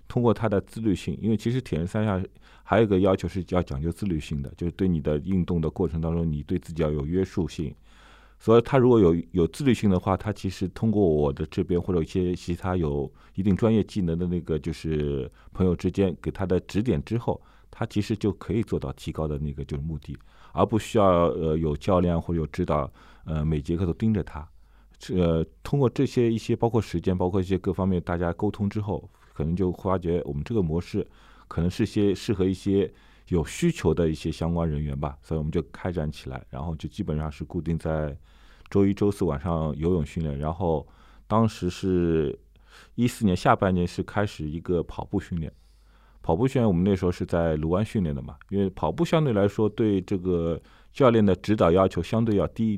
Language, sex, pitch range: Chinese, male, 80-100 Hz